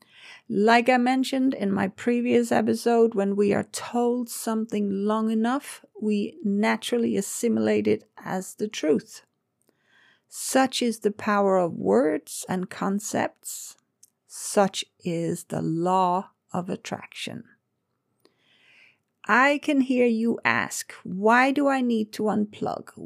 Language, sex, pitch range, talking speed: English, female, 205-255 Hz, 120 wpm